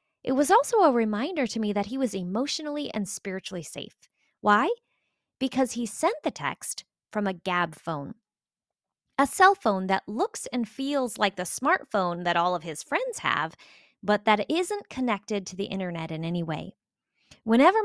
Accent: American